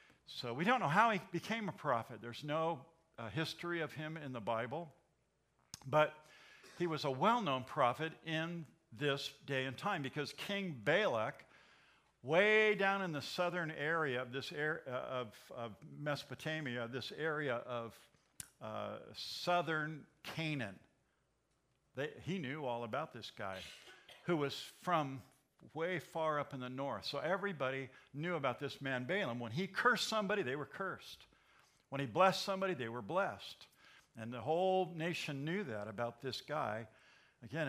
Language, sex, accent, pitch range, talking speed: English, male, American, 130-170 Hz, 155 wpm